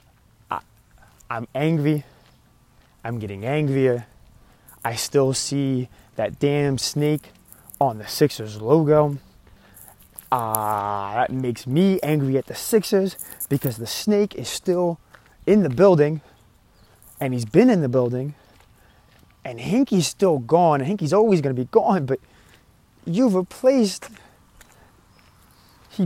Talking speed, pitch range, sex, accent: 115 wpm, 125-200 Hz, male, American